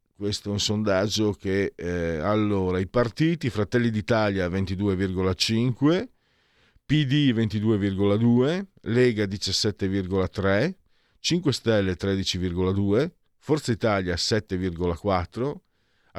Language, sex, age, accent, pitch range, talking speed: Italian, male, 50-69, native, 95-120 Hz, 80 wpm